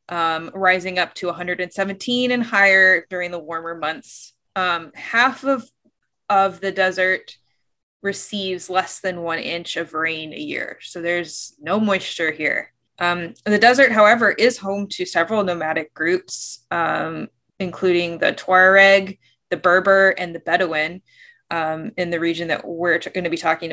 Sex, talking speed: female, 150 wpm